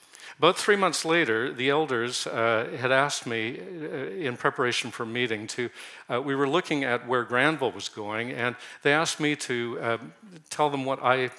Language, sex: English, male